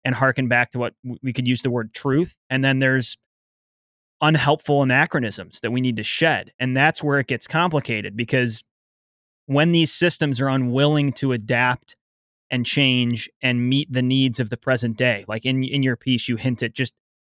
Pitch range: 120-135 Hz